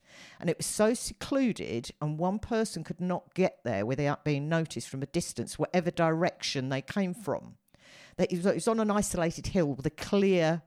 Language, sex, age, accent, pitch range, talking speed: English, female, 50-69, British, 135-180 Hz, 185 wpm